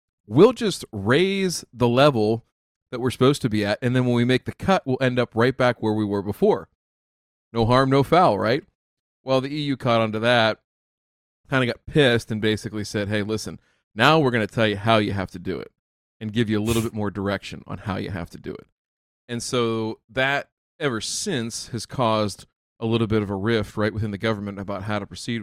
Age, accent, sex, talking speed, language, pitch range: 40-59, American, male, 225 wpm, English, 105-125 Hz